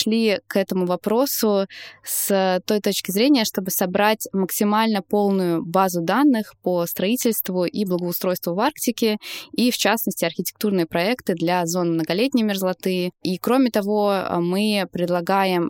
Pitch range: 175-215 Hz